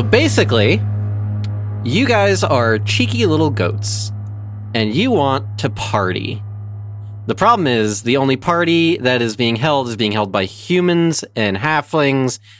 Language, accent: English, American